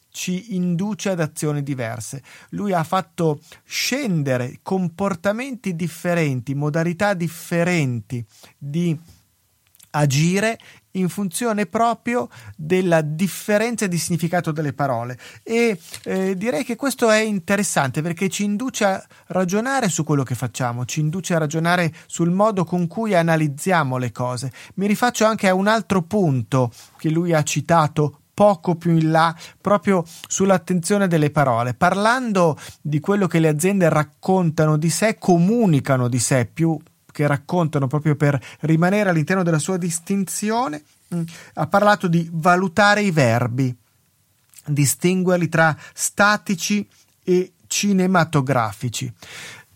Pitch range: 145-195 Hz